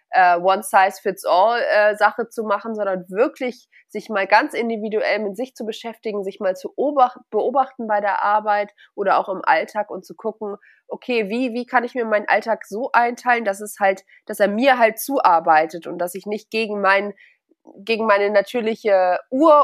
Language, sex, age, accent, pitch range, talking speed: German, female, 20-39, German, 185-225 Hz, 180 wpm